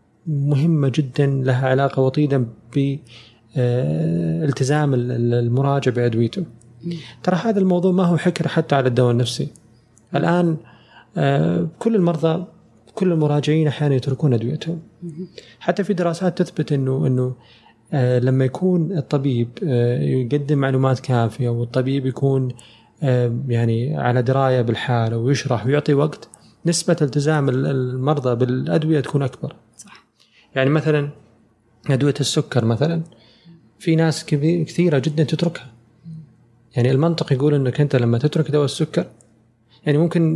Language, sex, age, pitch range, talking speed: Arabic, male, 30-49, 125-160 Hz, 110 wpm